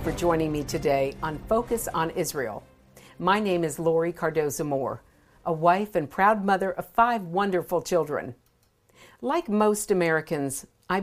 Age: 50-69